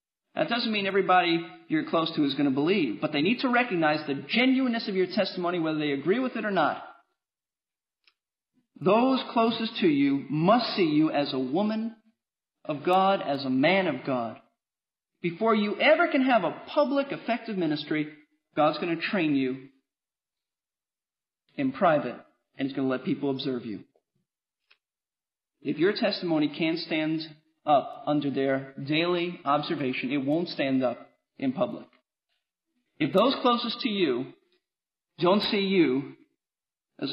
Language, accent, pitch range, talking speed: English, American, 150-250 Hz, 150 wpm